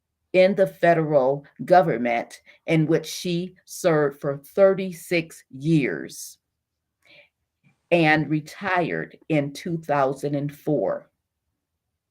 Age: 40-59